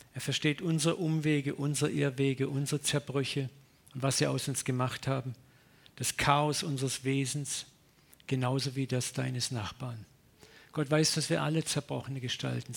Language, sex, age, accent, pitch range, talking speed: German, male, 50-69, German, 130-150 Hz, 145 wpm